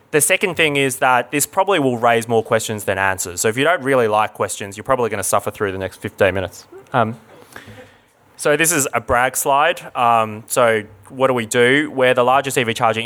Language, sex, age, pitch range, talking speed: English, male, 20-39, 115-145 Hz, 220 wpm